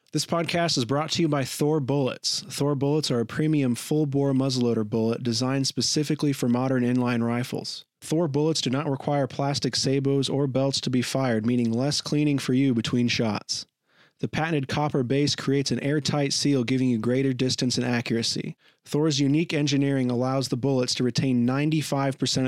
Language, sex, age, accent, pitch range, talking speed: English, male, 30-49, American, 125-145 Hz, 175 wpm